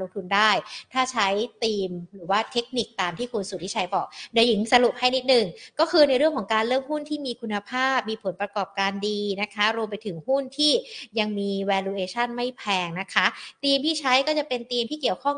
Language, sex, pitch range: Thai, female, 200-260 Hz